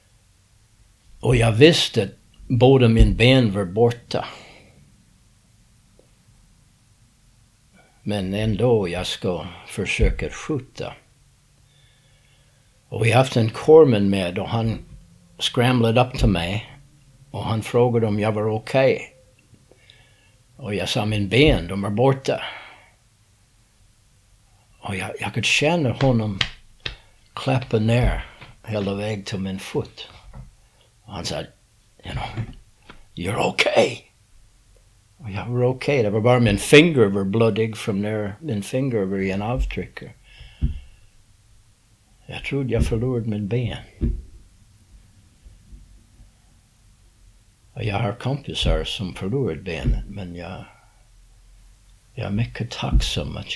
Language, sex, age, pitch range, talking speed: Swedish, male, 60-79, 100-120 Hz, 115 wpm